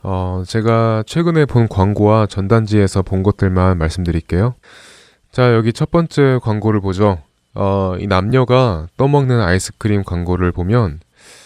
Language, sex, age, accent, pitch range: Korean, male, 20-39, native, 90-125 Hz